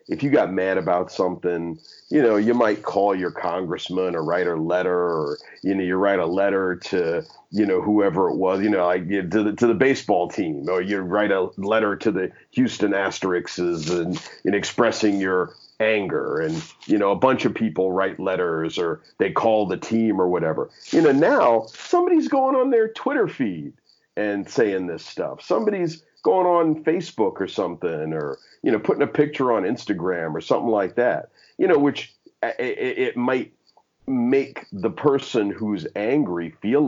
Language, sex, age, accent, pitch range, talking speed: English, male, 40-59, American, 90-130 Hz, 185 wpm